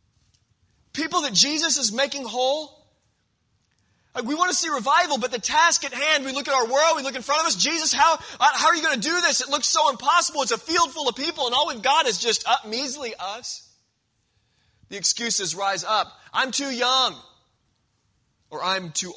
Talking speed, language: 205 wpm, English